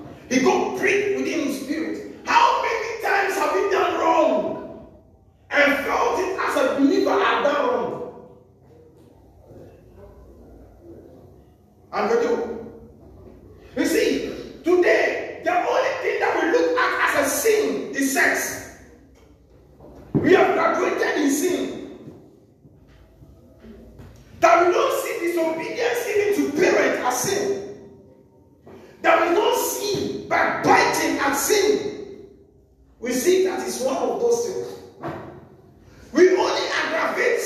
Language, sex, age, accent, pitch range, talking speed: English, male, 40-59, Nigerian, 330-450 Hz, 120 wpm